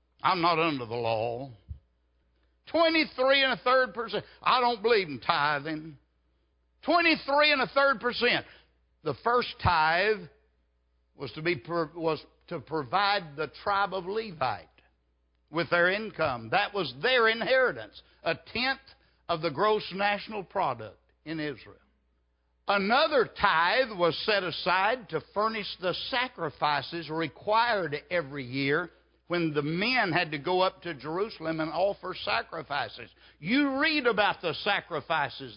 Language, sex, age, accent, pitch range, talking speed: English, male, 60-79, American, 140-215 Hz, 135 wpm